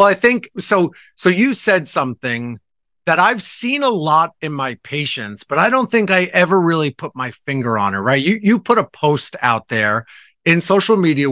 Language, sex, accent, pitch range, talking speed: English, male, American, 135-195 Hz, 205 wpm